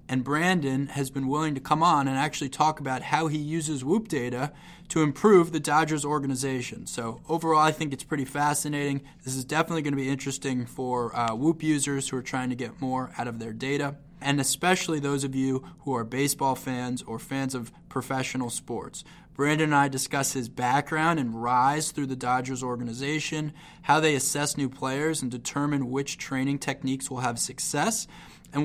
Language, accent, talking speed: English, American, 190 wpm